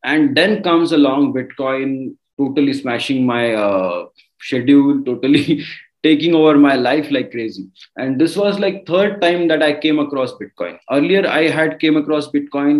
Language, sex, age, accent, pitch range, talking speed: English, male, 30-49, Indian, 125-175 Hz, 160 wpm